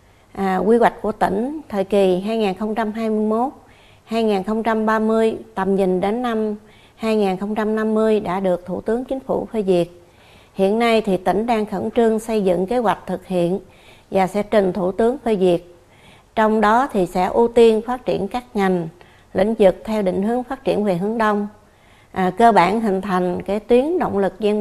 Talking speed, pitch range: 175 wpm, 185-220 Hz